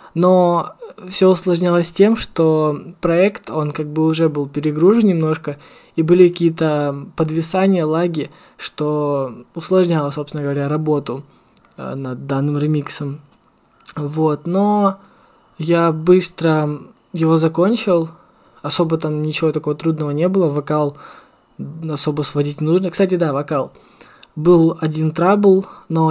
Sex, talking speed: male, 120 wpm